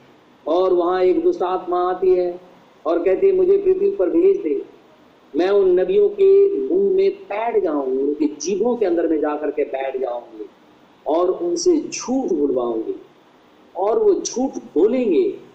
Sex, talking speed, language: male, 155 wpm, Hindi